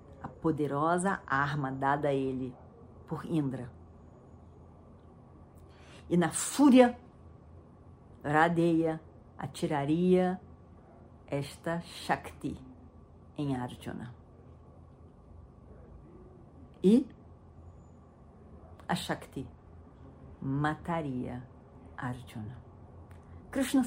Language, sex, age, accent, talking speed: Portuguese, female, 50-69, Brazilian, 55 wpm